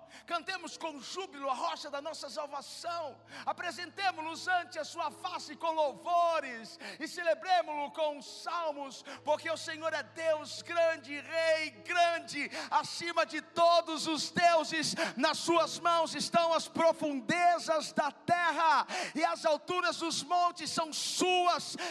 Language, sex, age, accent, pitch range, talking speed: Portuguese, male, 50-69, Brazilian, 310-370 Hz, 130 wpm